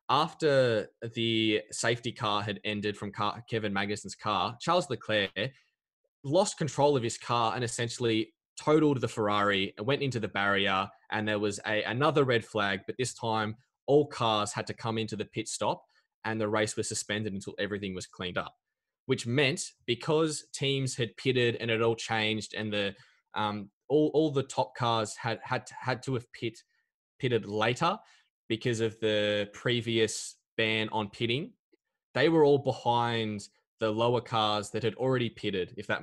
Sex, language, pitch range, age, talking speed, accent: male, English, 105-125 Hz, 20-39, 175 wpm, Australian